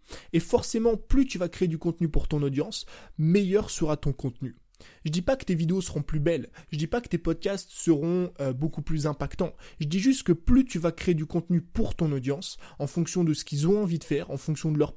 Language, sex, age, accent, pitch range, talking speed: French, male, 20-39, French, 145-185 Hz, 245 wpm